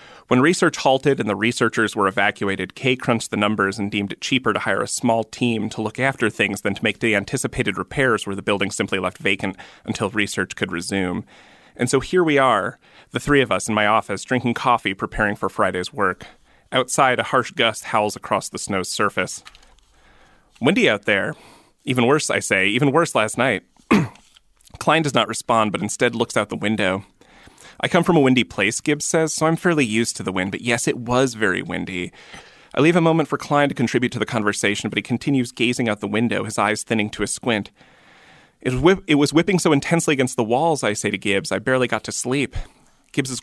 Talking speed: 210 wpm